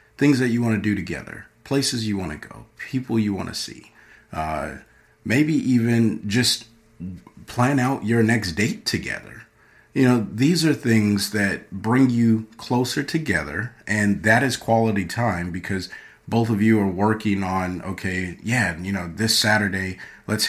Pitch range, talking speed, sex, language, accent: 95-115 Hz, 165 wpm, male, English, American